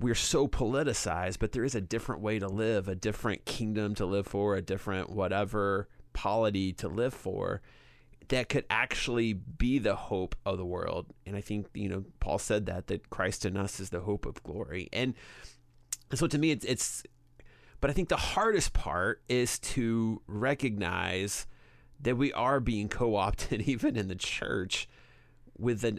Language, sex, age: English, male, 30-49